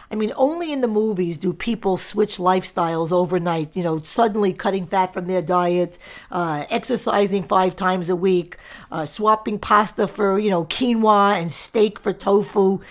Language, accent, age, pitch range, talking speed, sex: English, American, 50-69, 180-240 Hz, 165 wpm, female